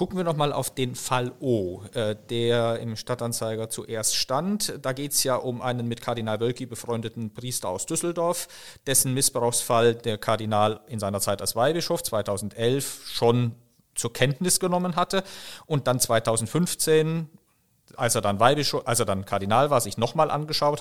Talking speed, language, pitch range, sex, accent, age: 160 wpm, German, 115-150 Hz, male, German, 40-59